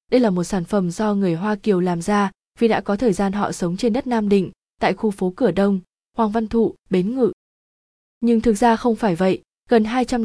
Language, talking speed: Vietnamese, 235 wpm